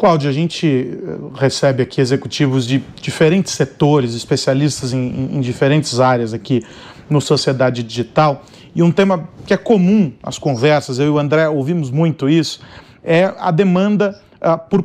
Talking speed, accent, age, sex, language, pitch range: 150 wpm, Brazilian, 40-59, male, Portuguese, 150-185 Hz